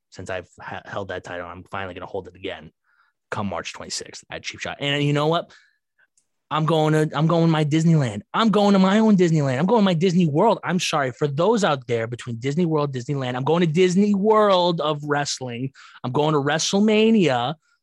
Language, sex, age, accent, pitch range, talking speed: English, male, 30-49, American, 115-180 Hz, 215 wpm